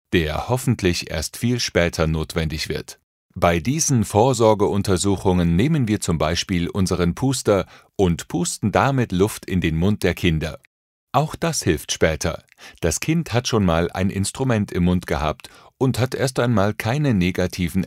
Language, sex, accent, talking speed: German, male, German, 150 wpm